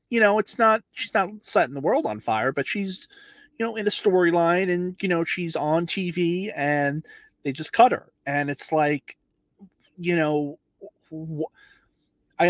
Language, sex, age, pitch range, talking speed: English, male, 30-49, 120-175 Hz, 170 wpm